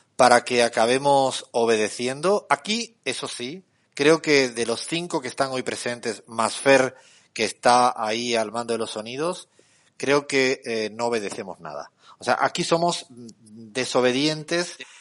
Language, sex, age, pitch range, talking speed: Spanish, male, 30-49, 120-155 Hz, 150 wpm